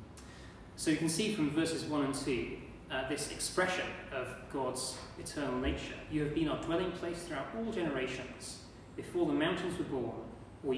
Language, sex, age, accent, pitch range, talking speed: English, male, 30-49, British, 130-165 Hz, 175 wpm